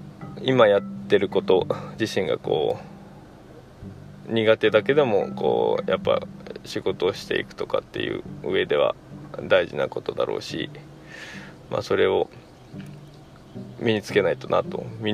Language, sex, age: Japanese, male, 20-39